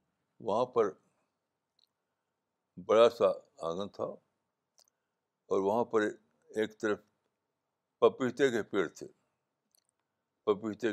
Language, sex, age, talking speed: Urdu, male, 60-79, 90 wpm